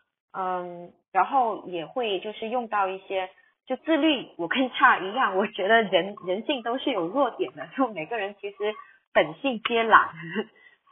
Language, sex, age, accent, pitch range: Chinese, female, 20-39, native, 185-250 Hz